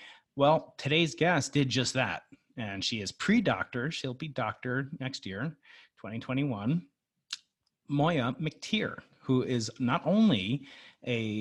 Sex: male